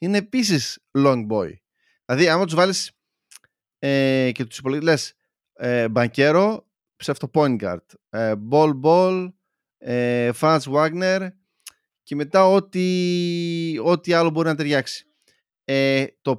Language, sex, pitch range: Greek, male, 130-185 Hz